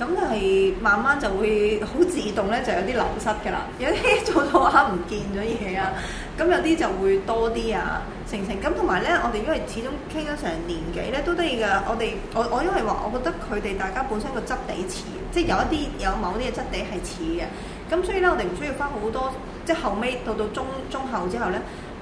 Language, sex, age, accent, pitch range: Chinese, female, 20-39, native, 195-305 Hz